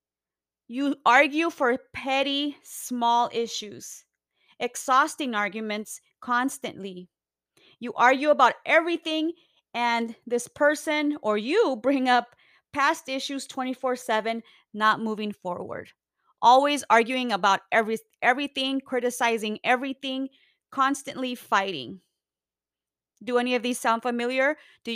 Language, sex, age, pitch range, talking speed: English, female, 30-49, 205-270 Hz, 100 wpm